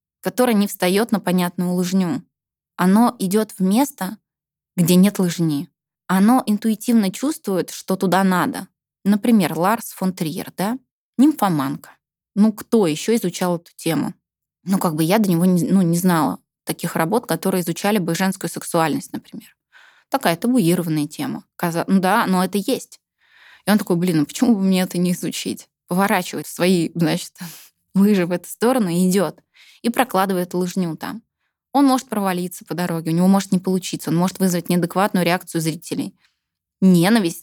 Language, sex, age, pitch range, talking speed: Russian, female, 20-39, 175-215 Hz, 155 wpm